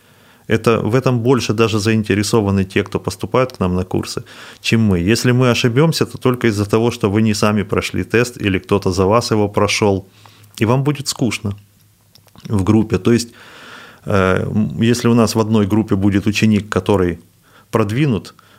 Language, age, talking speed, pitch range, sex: Russian, 30-49, 165 wpm, 95-110 Hz, male